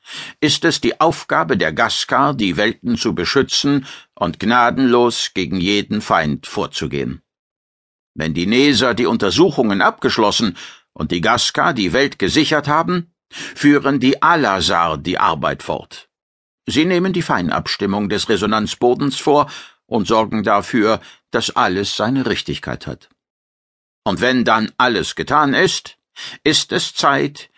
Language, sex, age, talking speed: German, male, 60-79, 130 wpm